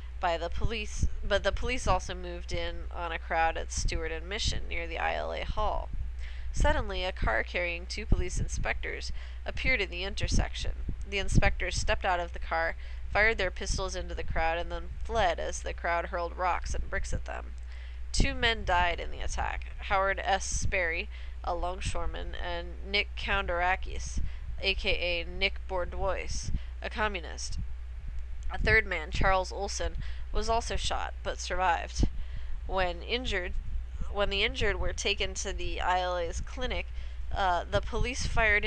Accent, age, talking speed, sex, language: American, 20-39, 155 wpm, female, English